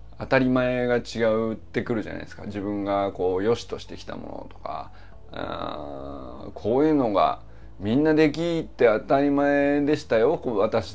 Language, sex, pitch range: Japanese, male, 100-160 Hz